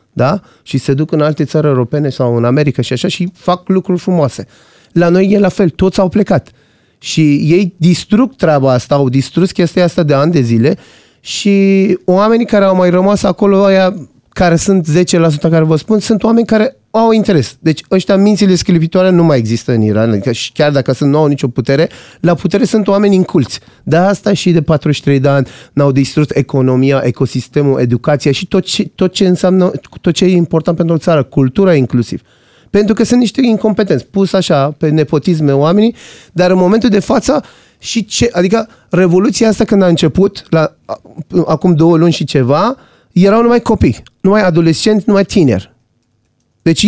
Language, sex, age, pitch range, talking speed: Romanian, male, 30-49, 145-200 Hz, 185 wpm